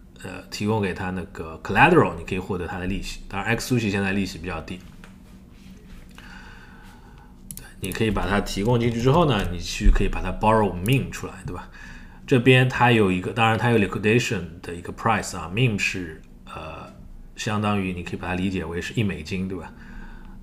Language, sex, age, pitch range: Chinese, male, 20-39, 90-105 Hz